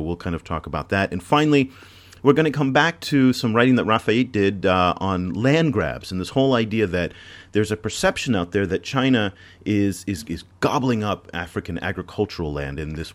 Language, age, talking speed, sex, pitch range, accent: English, 40-59, 205 wpm, male, 85-110 Hz, American